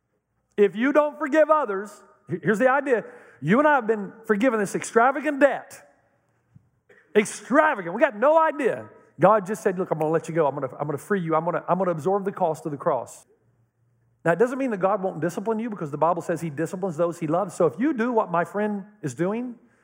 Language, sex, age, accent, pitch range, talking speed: English, male, 50-69, American, 155-225 Hz, 220 wpm